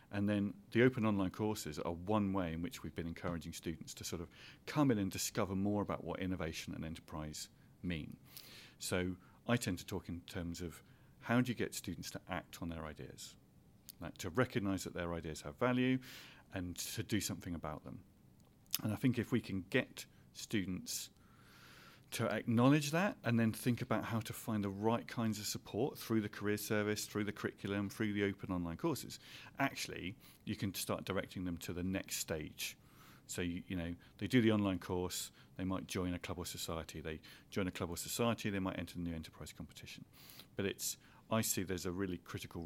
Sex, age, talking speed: male, 40-59, 200 wpm